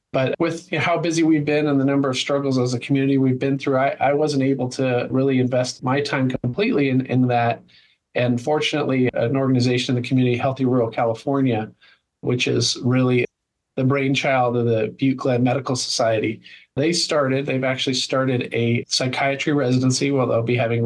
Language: English